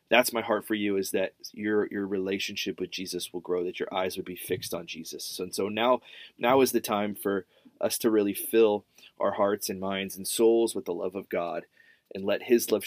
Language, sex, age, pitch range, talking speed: English, male, 20-39, 95-120 Hz, 230 wpm